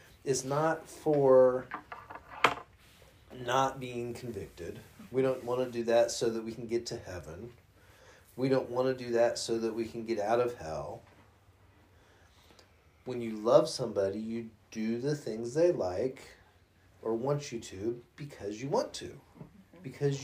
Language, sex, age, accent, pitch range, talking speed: English, male, 30-49, American, 100-135 Hz, 155 wpm